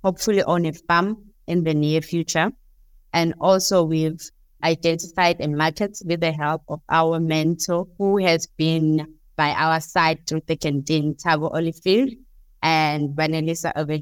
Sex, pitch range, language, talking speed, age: female, 150-170 Hz, English, 145 wpm, 20-39